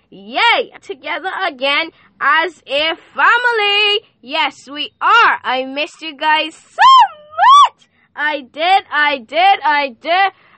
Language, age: English, 10-29